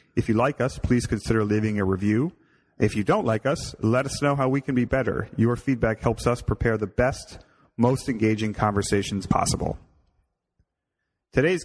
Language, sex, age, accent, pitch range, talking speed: English, male, 30-49, American, 105-120 Hz, 175 wpm